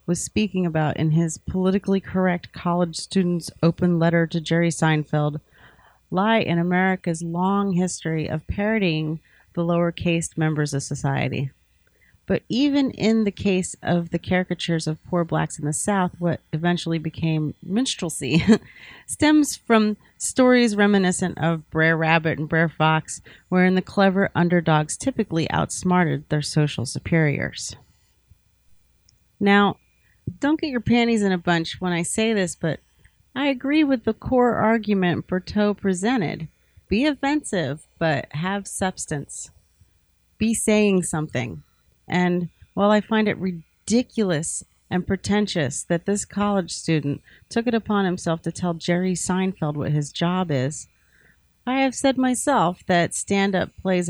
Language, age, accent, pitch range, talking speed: English, 30-49, American, 155-195 Hz, 140 wpm